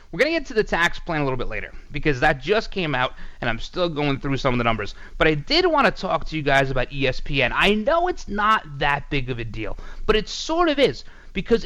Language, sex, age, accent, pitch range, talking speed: English, male, 30-49, American, 120-185 Hz, 270 wpm